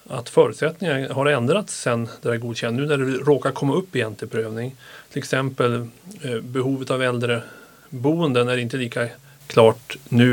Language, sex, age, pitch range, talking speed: Swedish, male, 30-49, 115-140 Hz, 165 wpm